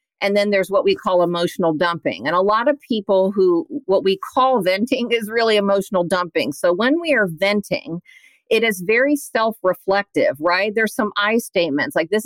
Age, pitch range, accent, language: 50-69, 175-240 Hz, American, English